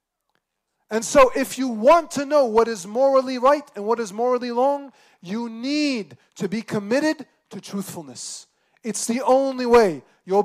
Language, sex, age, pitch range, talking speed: English, male, 30-49, 180-245 Hz, 160 wpm